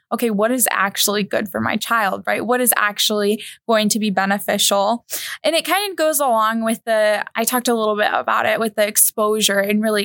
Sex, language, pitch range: female, English, 210-265 Hz